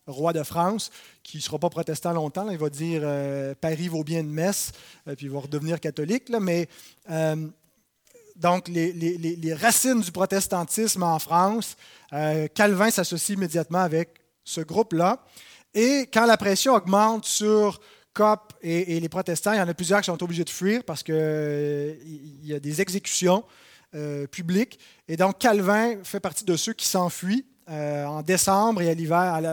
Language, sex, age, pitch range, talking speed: French, male, 30-49, 160-205 Hz, 180 wpm